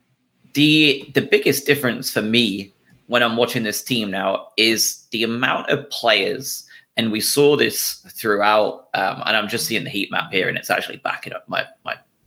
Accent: British